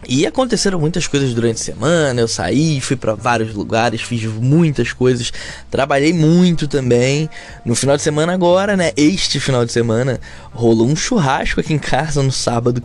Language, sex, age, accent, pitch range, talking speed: Portuguese, male, 10-29, Brazilian, 110-170 Hz, 175 wpm